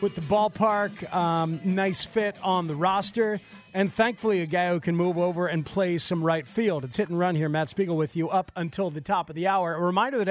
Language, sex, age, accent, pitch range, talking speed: English, male, 40-59, American, 160-205 Hz, 240 wpm